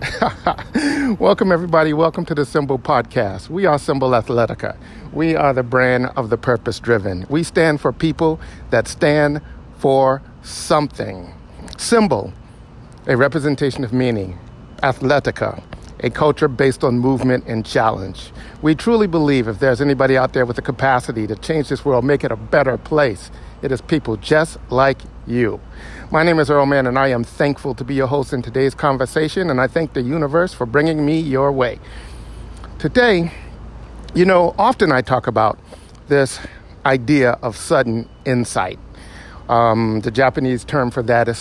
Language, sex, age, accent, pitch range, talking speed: English, male, 50-69, American, 115-150 Hz, 160 wpm